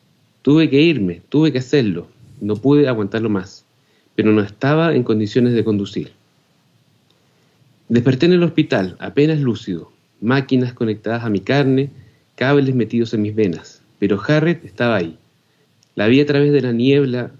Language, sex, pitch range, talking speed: Spanish, male, 110-140 Hz, 150 wpm